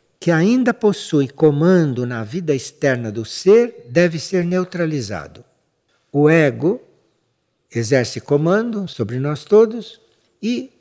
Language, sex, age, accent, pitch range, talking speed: Portuguese, male, 60-79, Brazilian, 135-215 Hz, 110 wpm